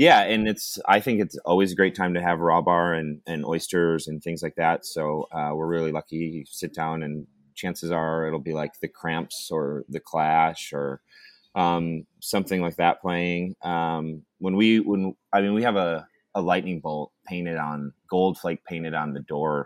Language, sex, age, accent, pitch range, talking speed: English, male, 30-49, American, 80-95 Hz, 200 wpm